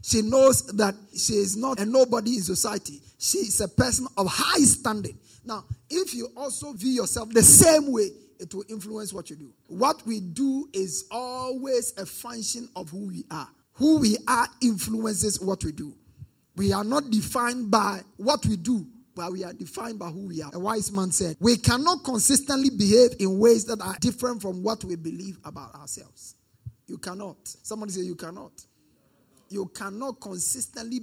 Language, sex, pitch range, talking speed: English, male, 185-250 Hz, 185 wpm